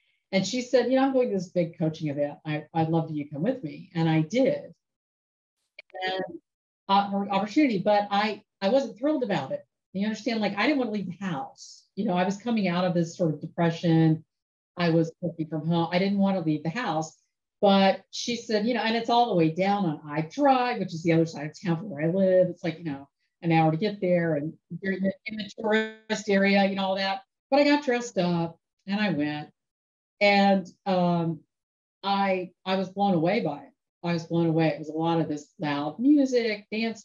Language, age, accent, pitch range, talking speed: English, 50-69, American, 155-200 Hz, 230 wpm